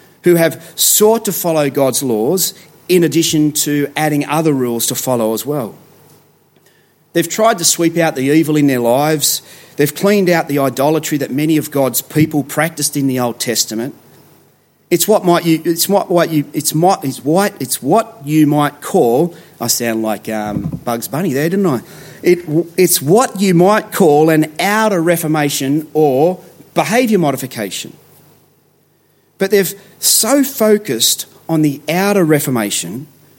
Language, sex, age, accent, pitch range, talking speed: English, male, 40-59, Australian, 130-165 Hz, 155 wpm